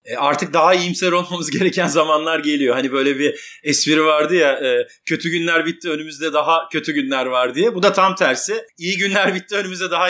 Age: 40-59